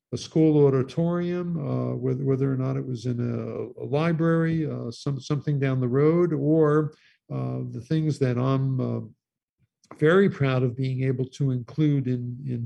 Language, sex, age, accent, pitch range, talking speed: English, male, 50-69, American, 120-145 Hz, 170 wpm